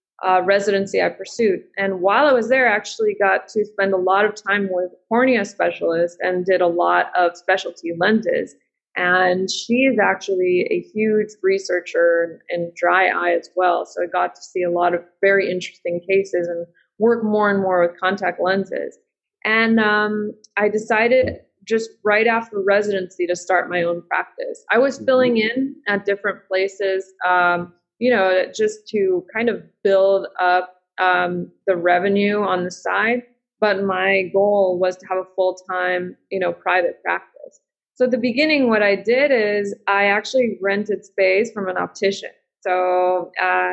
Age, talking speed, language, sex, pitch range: 20-39, 170 wpm, English, female, 185-220 Hz